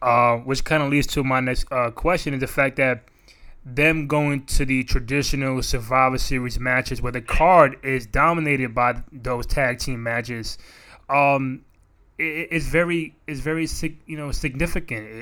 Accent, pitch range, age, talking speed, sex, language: American, 125-145 Hz, 20-39, 160 wpm, male, English